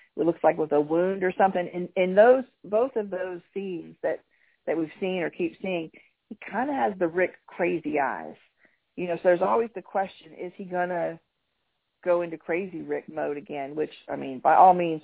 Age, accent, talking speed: 40-59, American, 205 wpm